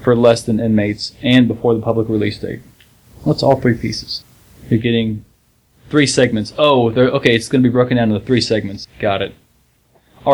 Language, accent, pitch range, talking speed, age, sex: English, American, 110-130 Hz, 190 wpm, 20-39, male